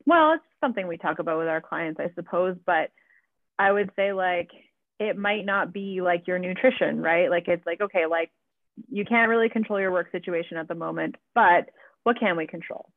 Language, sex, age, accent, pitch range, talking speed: English, female, 30-49, American, 175-210 Hz, 205 wpm